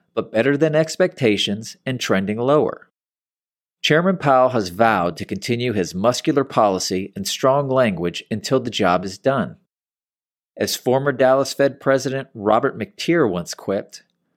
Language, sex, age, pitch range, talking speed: English, male, 40-59, 100-150 Hz, 140 wpm